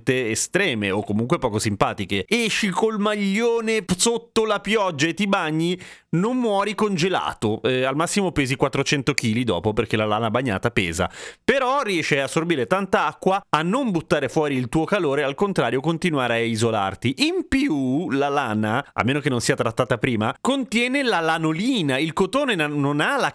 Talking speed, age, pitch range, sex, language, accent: 170 wpm, 30-49, 120-180 Hz, male, Italian, native